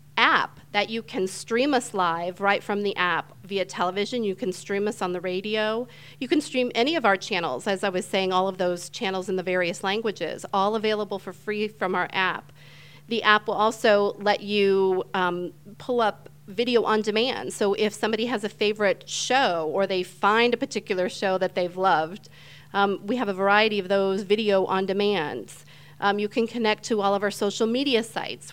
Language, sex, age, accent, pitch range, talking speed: English, female, 40-59, American, 185-225 Hz, 200 wpm